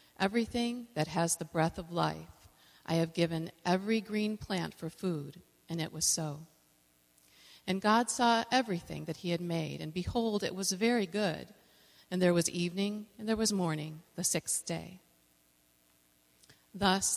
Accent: American